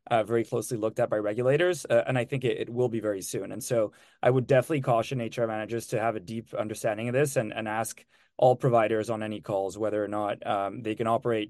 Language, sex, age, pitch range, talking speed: English, male, 20-39, 110-130 Hz, 245 wpm